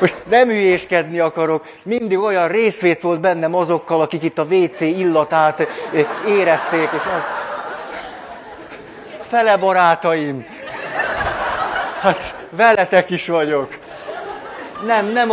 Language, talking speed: Hungarian, 100 wpm